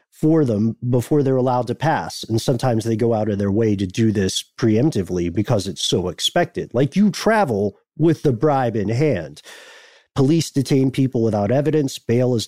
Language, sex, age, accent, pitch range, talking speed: English, male, 40-59, American, 115-145 Hz, 185 wpm